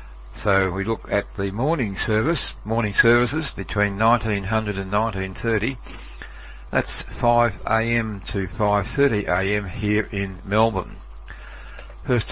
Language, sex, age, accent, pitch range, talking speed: English, male, 60-79, Australian, 100-115 Hz, 100 wpm